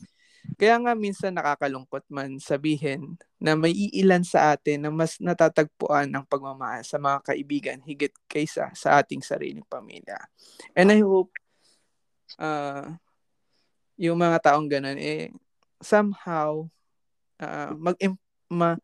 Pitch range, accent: 140-170 Hz, Filipino